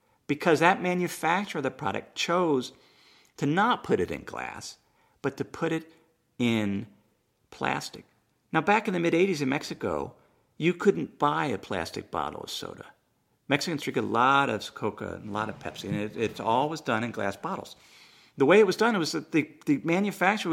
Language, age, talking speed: English, 50-69, 185 wpm